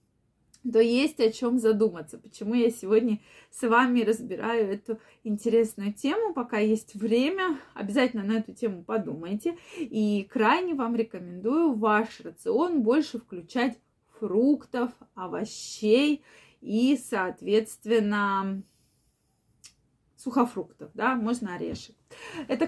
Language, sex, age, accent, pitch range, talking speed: Russian, female, 20-39, native, 205-255 Hz, 105 wpm